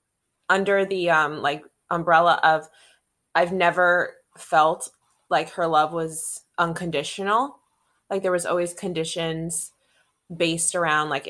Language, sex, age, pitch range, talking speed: English, female, 20-39, 155-190 Hz, 115 wpm